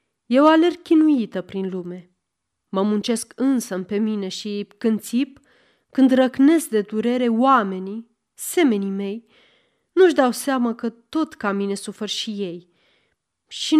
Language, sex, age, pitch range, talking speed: Romanian, female, 30-49, 195-255 Hz, 135 wpm